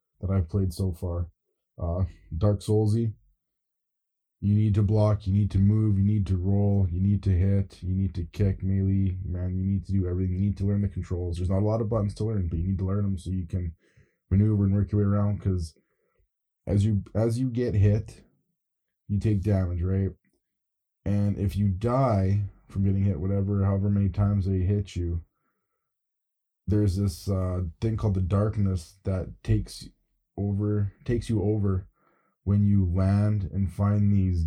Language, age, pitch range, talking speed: English, 20-39, 95-100 Hz, 190 wpm